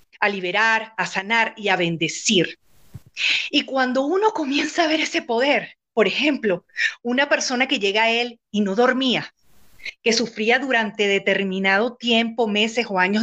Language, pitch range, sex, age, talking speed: Spanish, 205-265 Hz, female, 40-59, 155 wpm